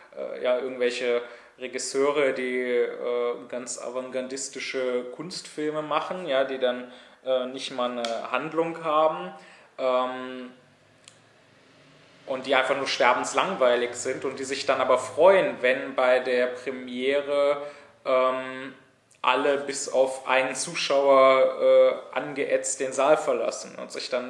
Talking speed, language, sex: 120 wpm, German, male